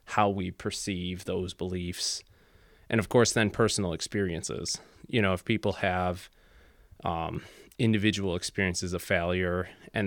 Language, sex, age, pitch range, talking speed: English, male, 20-39, 90-105 Hz, 130 wpm